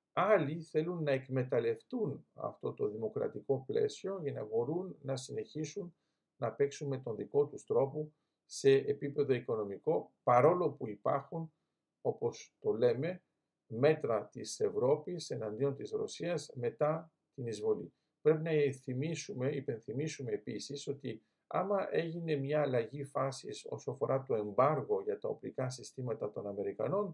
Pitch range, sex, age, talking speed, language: 145-235 Hz, male, 50-69, 130 wpm, Greek